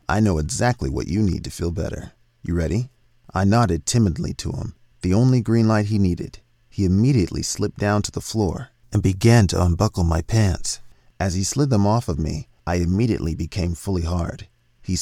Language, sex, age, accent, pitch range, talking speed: English, male, 40-59, American, 85-115 Hz, 190 wpm